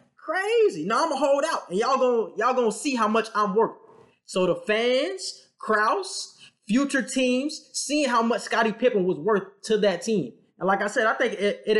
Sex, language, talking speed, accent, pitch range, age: male, English, 205 wpm, American, 185-250 Hz, 20-39